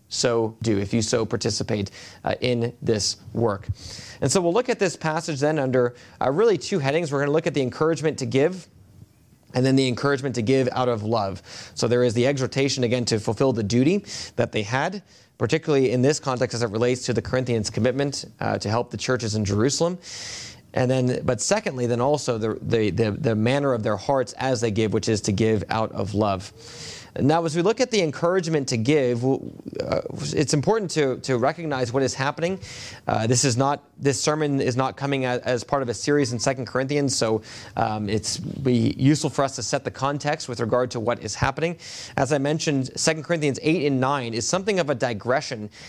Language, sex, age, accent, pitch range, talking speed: English, male, 30-49, American, 115-145 Hz, 210 wpm